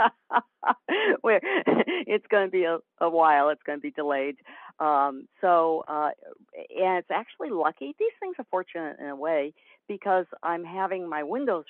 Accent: American